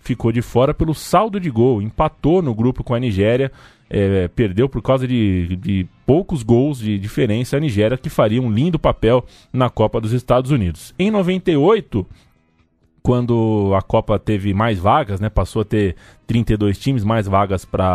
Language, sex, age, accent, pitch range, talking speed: Portuguese, male, 20-39, Brazilian, 110-145 Hz, 165 wpm